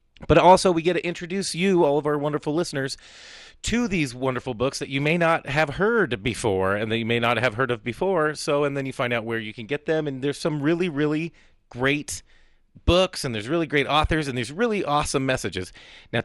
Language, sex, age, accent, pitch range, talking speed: English, male, 30-49, American, 120-155 Hz, 225 wpm